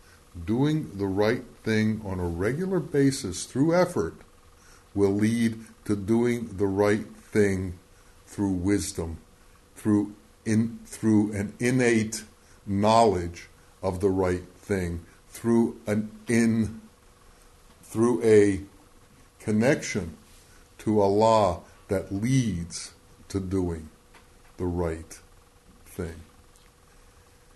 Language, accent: English, American